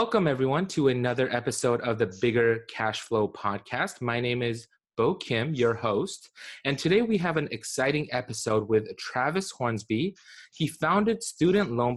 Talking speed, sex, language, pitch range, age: 160 wpm, male, English, 110-150 Hz, 30-49